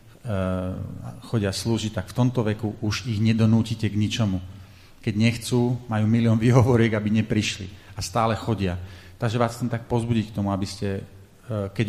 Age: 40-59